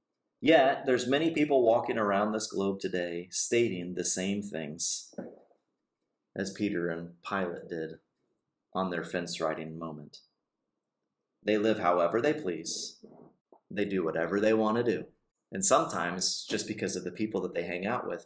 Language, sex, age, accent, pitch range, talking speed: English, male, 30-49, American, 90-110 Hz, 150 wpm